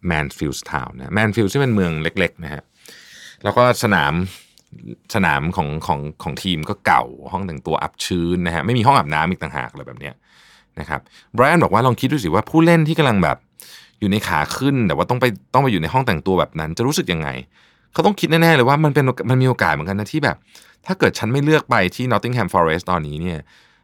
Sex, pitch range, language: male, 85-120 Hz, Thai